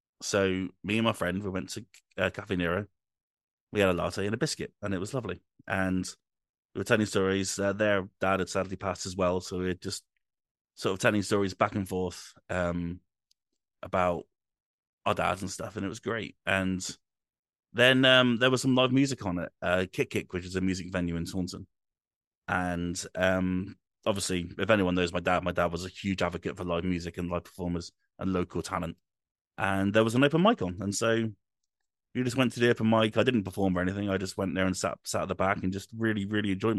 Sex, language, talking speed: male, English, 220 wpm